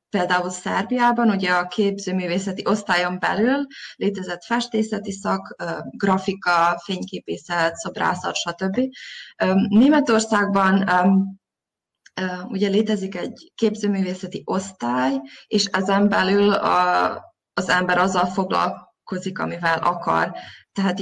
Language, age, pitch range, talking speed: Hungarian, 20-39, 185-220 Hz, 90 wpm